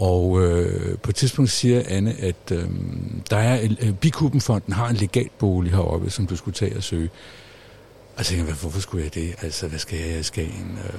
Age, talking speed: 60-79, 195 wpm